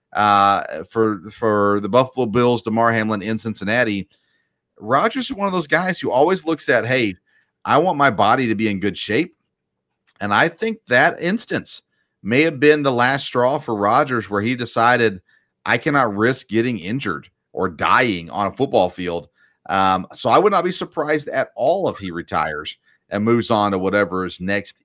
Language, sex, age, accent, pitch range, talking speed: English, male, 40-59, American, 100-135 Hz, 185 wpm